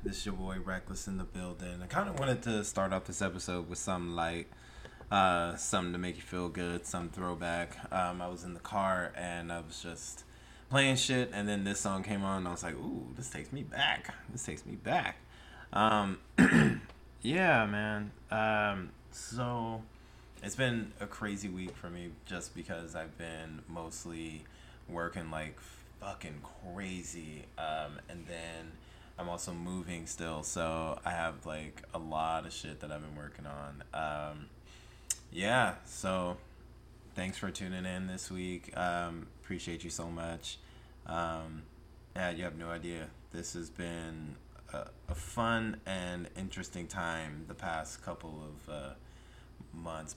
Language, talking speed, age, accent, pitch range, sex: English, 165 wpm, 20-39, American, 80-95 Hz, male